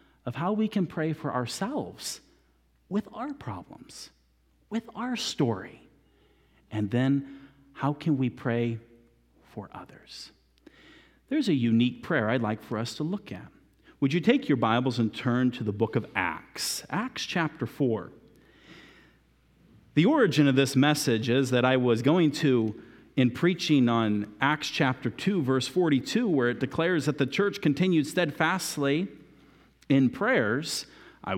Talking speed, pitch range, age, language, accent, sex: 145 wpm, 115-160 Hz, 40-59, English, American, male